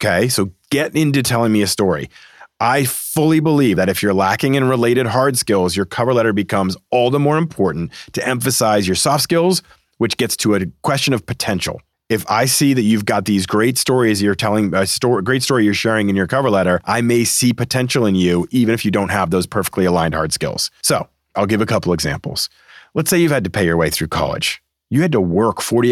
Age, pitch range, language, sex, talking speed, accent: 40-59, 95-135 Hz, English, male, 220 wpm, American